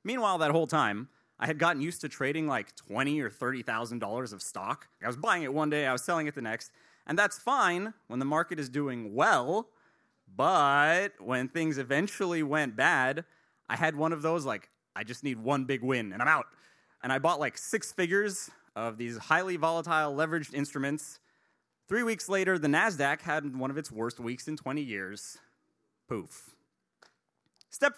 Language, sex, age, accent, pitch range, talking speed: English, male, 30-49, American, 130-170 Hz, 185 wpm